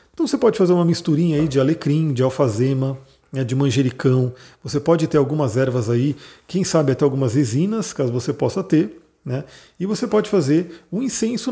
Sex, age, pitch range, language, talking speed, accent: male, 40-59, 135-170 Hz, Portuguese, 180 wpm, Brazilian